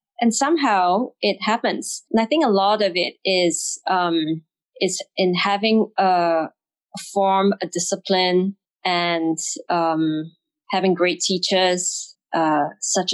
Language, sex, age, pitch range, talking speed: Arabic, female, 20-39, 175-205 Hz, 130 wpm